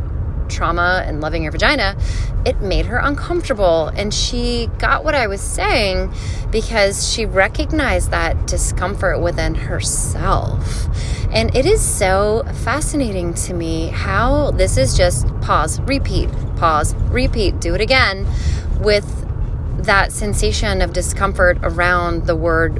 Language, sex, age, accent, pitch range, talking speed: English, female, 20-39, American, 80-95 Hz, 130 wpm